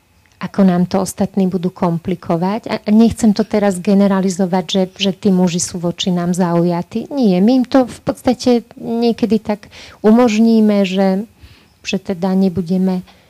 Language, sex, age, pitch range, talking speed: Slovak, female, 30-49, 180-200 Hz, 150 wpm